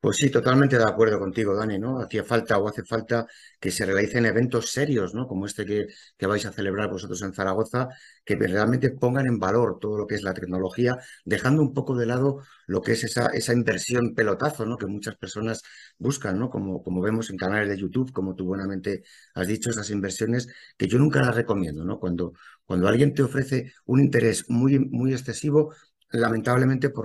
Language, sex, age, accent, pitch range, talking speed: Spanish, male, 50-69, Spanish, 95-120 Hz, 200 wpm